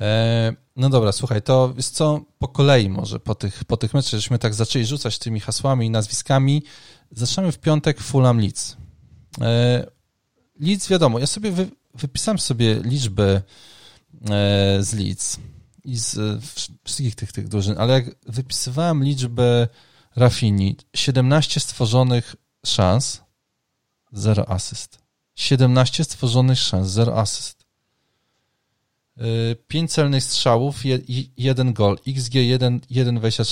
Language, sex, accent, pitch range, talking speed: Polish, male, native, 115-135 Hz, 120 wpm